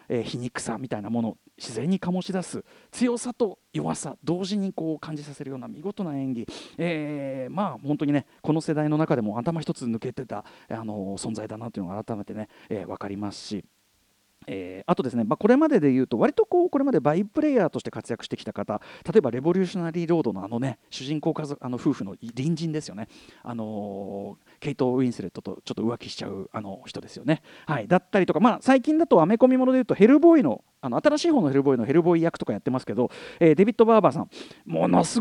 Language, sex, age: Japanese, male, 40-59